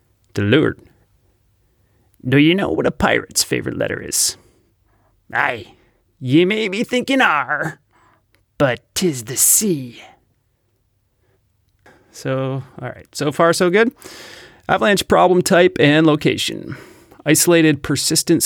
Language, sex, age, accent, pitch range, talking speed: English, male, 30-49, American, 105-150 Hz, 110 wpm